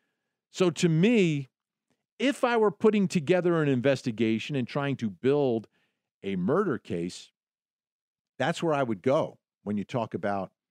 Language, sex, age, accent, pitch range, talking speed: English, male, 50-69, American, 115-180 Hz, 145 wpm